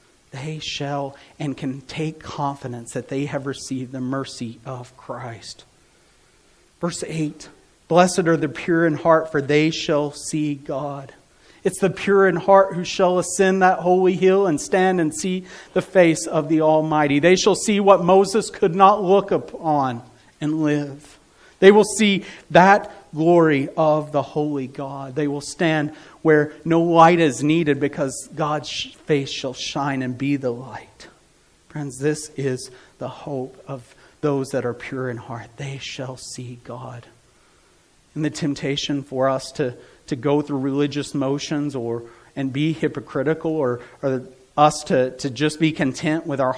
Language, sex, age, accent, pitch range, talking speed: English, male, 40-59, American, 135-165 Hz, 160 wpm